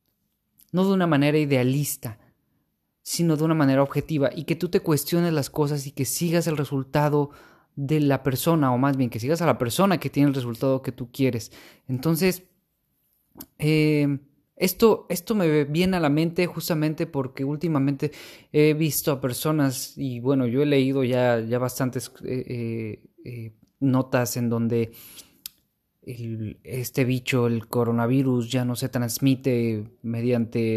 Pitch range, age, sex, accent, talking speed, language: 120-150 Hz, 20-39, male, Mexican, 155 wpm, Spanish